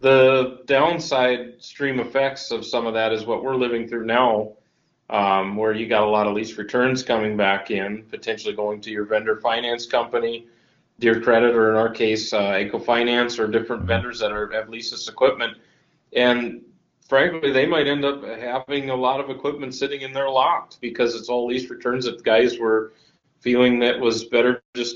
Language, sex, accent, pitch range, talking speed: English, male, American, 110-130 Hz, 190 wpm